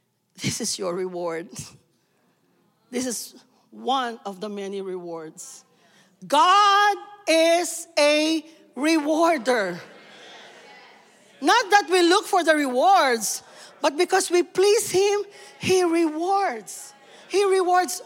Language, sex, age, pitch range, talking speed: English, female, 40-59, 210-335 Hz, 105 wpm